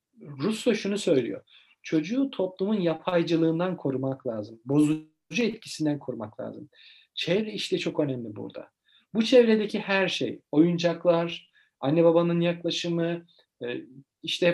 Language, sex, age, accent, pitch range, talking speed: Turkish, male, 50-69, native, 155-190 Hz, 105 wpm